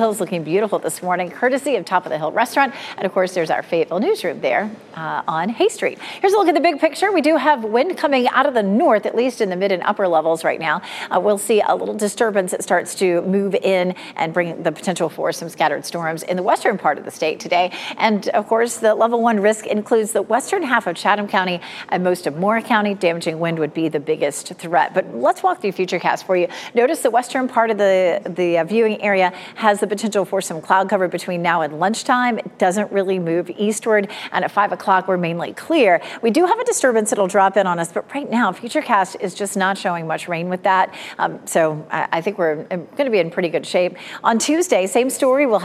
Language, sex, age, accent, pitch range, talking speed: English, female, 40-59, American, 180-230 Hz, 240 wpm